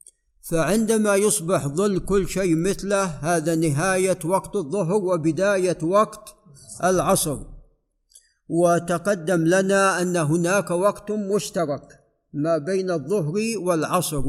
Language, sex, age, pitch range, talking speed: Arabic, male, 50-69, 165-195 Hz, 95 wpm